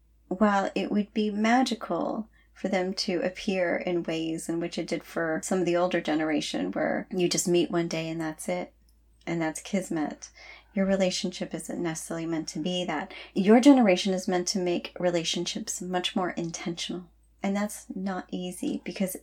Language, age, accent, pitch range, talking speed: English, 30-49, American, 170-195 Hz, 175 wpm